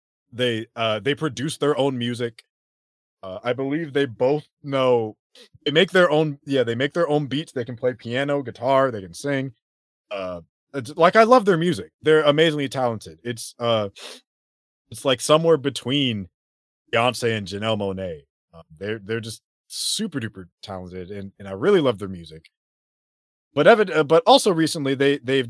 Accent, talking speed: American, 170 wpm